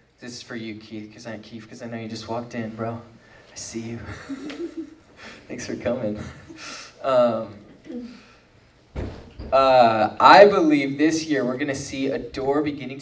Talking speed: 150 wpm